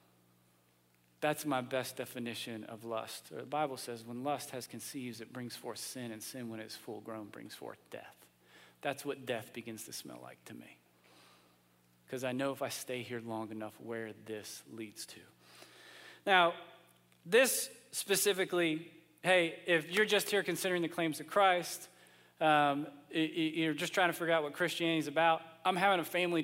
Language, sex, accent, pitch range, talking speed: English, male, American, 125-170 Hz, 170 wpm